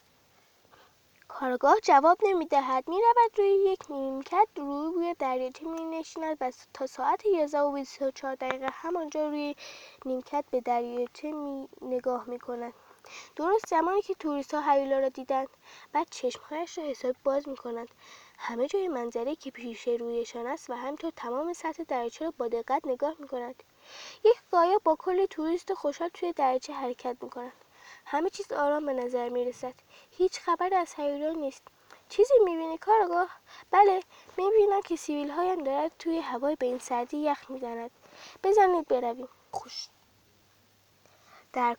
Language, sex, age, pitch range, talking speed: English, female, 20-39, 255-345 Hz, 150 wpm